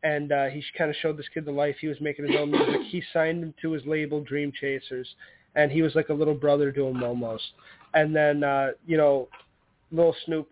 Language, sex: English, male